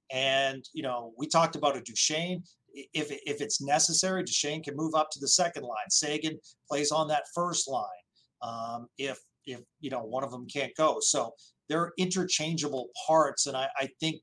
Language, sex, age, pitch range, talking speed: English, male, 40-59, 135-160 Hz, 190 wpm